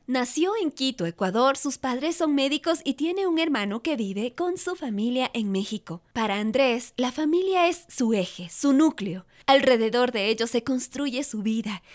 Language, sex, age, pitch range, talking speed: Spanish, female, 20-39, 215-300 Hz, 175 wpm